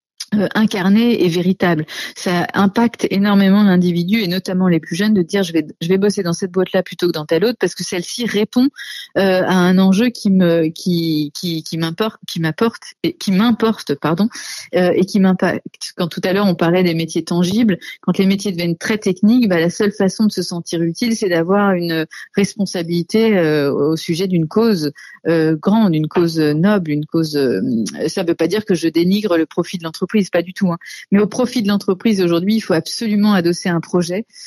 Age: 30-49